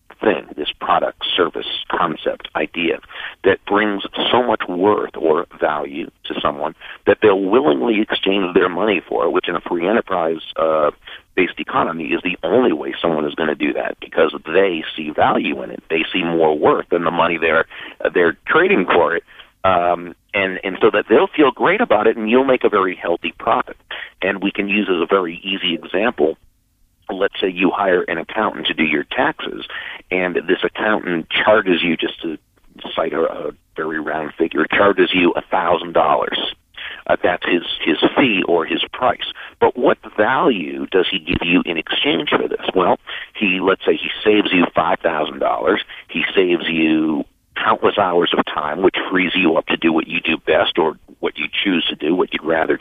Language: English